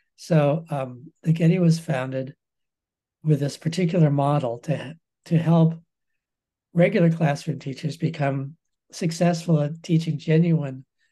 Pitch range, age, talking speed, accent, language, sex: 140-165 Hz, 60-79, 115 wpm, American, English, male